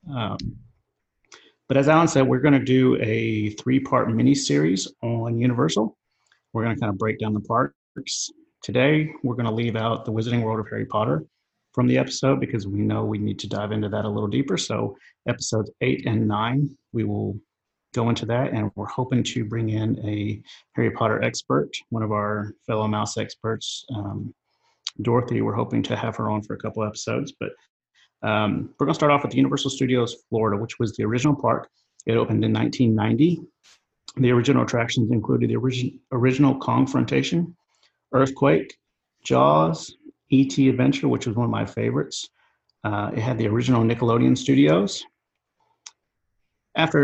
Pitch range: 110-130 Hz